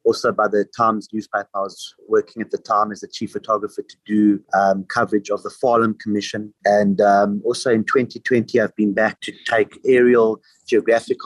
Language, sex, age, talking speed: English, male, 30-49, 185 wpm